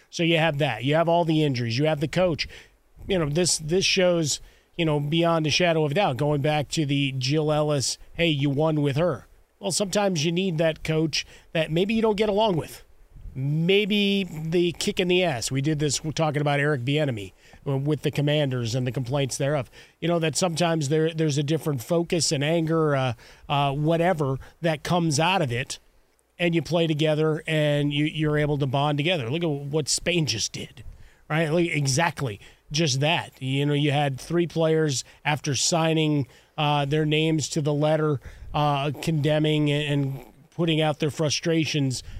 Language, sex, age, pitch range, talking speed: English, male, 40-59, 145-165 Hz, 185 wpm